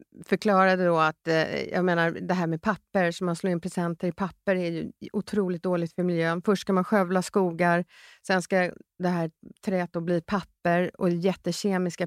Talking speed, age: 185 wpm, 40-59